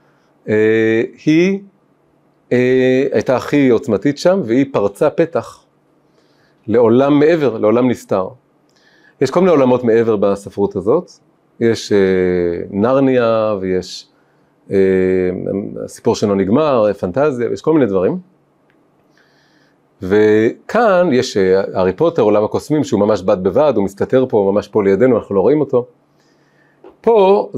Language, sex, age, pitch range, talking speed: Hebrew, male, 40-59, 105-140 Hz, 125 wpm